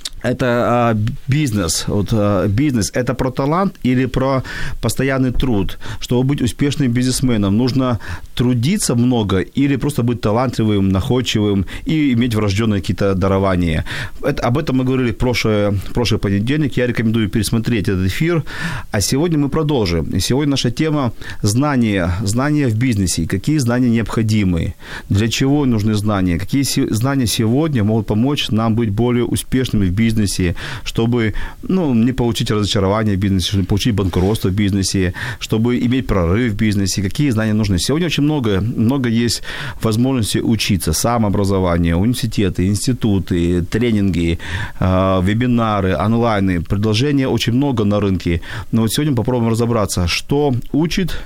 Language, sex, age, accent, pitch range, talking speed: Ukrainian, male, 40-59, native, 100-130 Hz, 135 wpm